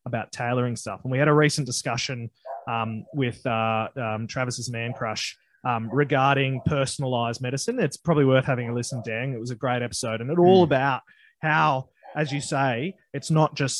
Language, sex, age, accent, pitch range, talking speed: English, male, 20-39, Australian, 125-155 Hz, 185 wpm